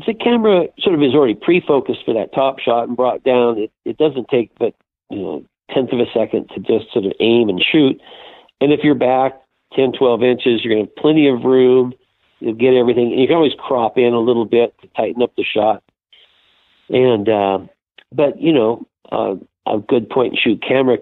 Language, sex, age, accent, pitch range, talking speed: English, male, 50-69, American, 110-135 Hz, 215 wpm